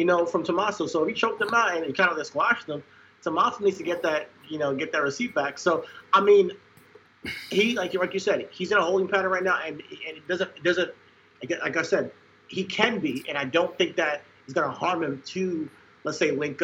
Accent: American